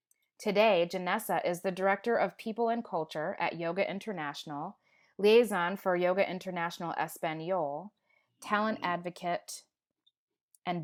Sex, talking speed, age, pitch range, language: female, 110 wpm, 30-49, 170-205 Hz, English